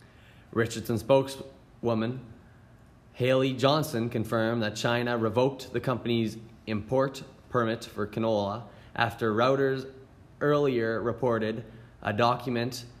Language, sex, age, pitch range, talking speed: English, male, 20-39, 110-130 Hz, 90 wpm